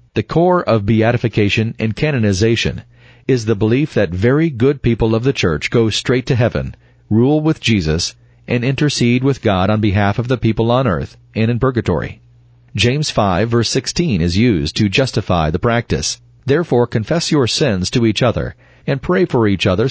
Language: English